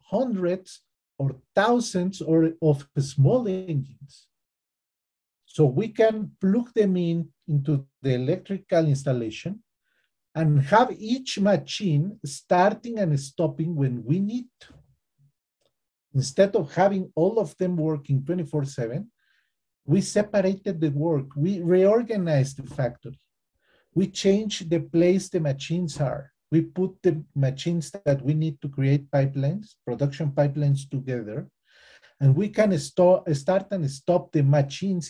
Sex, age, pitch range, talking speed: male, 40-59, 140-185 Hz, 120 wpm